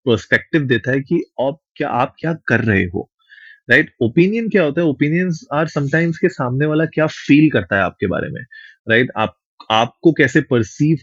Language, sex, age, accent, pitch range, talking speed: Hindi, male, 30-49, native, 115-155 Hz, 190 wpm